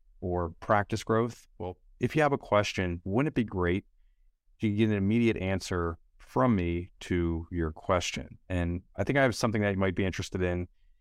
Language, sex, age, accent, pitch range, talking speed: English, male, 30-49, American, 85-105 Hz, 190 wpm